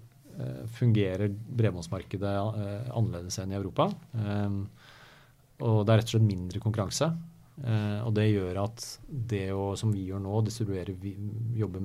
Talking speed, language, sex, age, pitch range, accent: 130 wpm, English, male, 30-49, 100-120 Hz, Norwegian